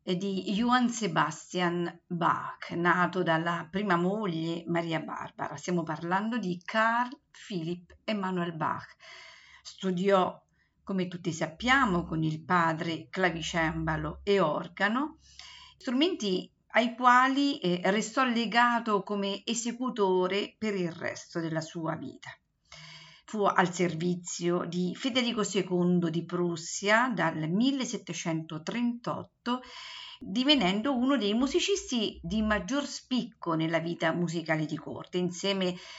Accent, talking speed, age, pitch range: native, 105 wpm, 50-69, 175-240 Hz